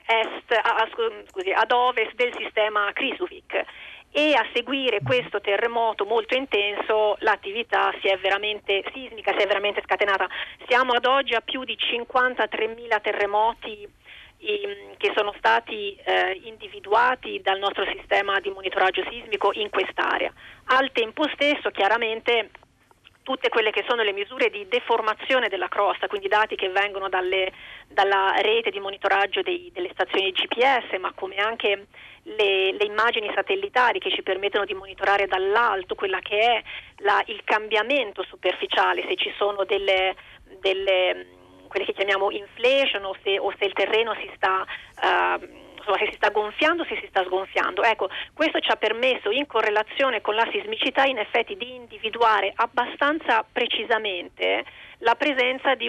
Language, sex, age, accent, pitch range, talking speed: Italian, female, 30-49, native, 200-265 Hz, 150 wpm